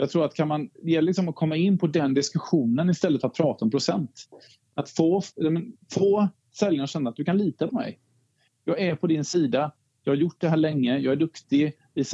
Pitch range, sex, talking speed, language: 130-165 Hz, male, 220 wpm, Swedish